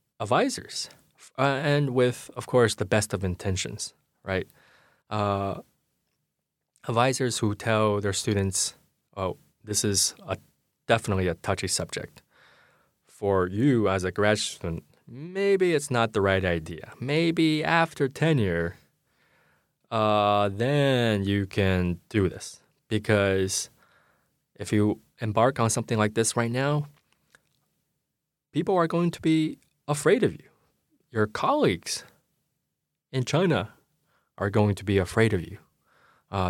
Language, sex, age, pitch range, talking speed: English, male, 20-39, 95-130 Hz, 125 wpm